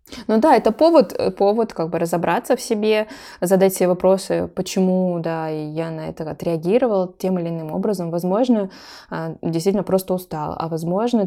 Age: 20-39